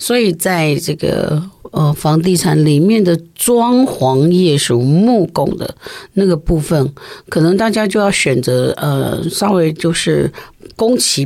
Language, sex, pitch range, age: Chinese, female, 150-180 Hz, 50-69